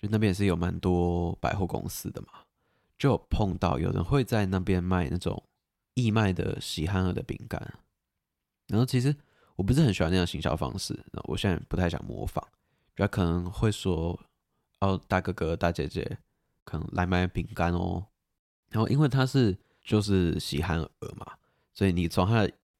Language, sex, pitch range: Chinese, male, 90-110 Hz